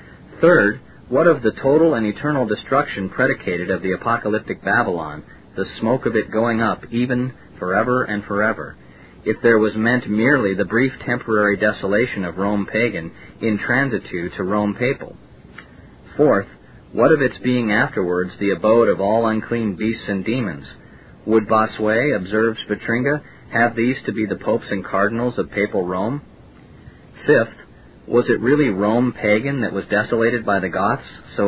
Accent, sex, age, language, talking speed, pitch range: American, male, 40-59, English, 155 wpm, 100-120 Hz